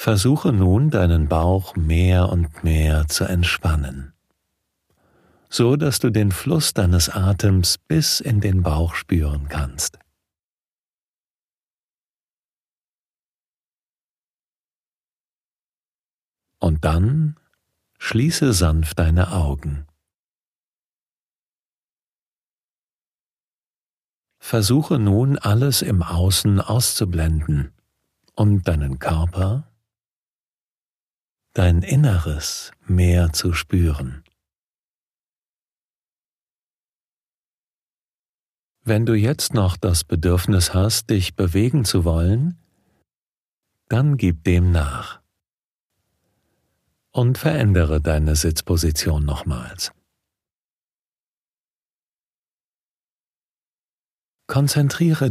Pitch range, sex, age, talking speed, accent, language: 85-110 Hz, male, 40-59, 70 wpm, German, German